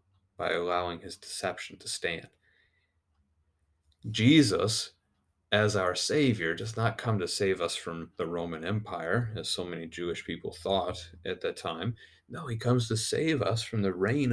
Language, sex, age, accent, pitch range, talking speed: English, male, 30-49, American, 85-105 Hz, 160 wpm